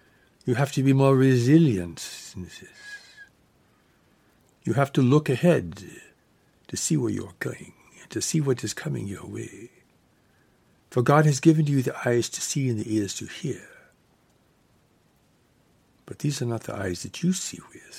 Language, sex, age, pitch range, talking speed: English, male, 60-79, 110-140 Hz, 165 wpm